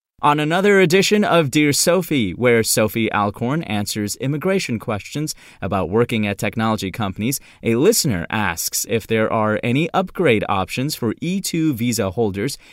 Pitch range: 110-165 Hz